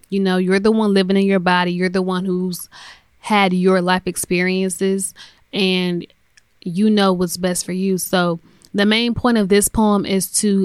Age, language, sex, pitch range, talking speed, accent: 10-29, English, female, 185-200 Hz, 185 wpm, American